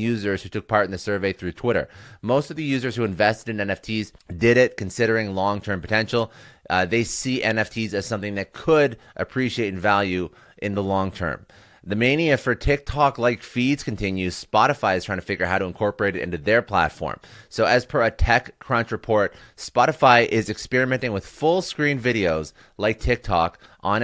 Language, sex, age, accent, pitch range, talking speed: English, male, 30-49, American, 95-120 Hz, 175 wpm